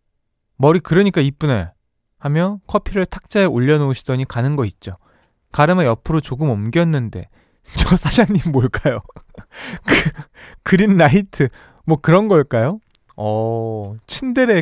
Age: 20-39